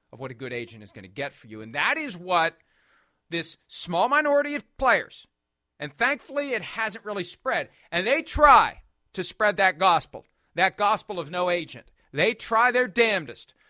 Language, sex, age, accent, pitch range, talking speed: English, male, 40-59, American, 160-235 Hz, 185 wpm